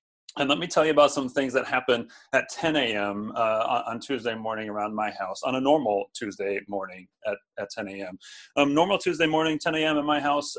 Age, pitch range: 30-49, 120-140 Hz